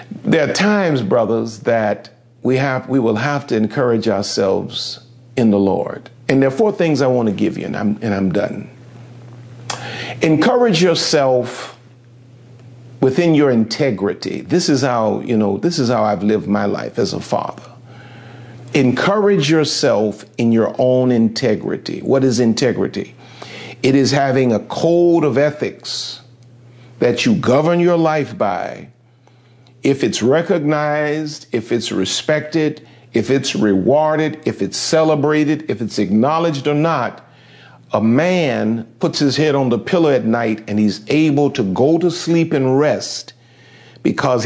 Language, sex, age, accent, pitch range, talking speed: English, male, 50-69, American, 120-150 Hz, 145 wpm